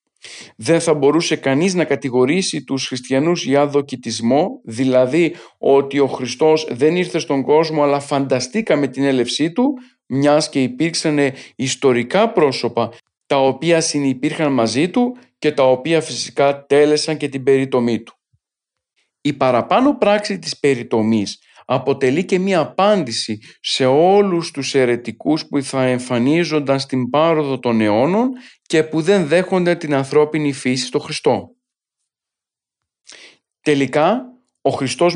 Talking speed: 130 wpm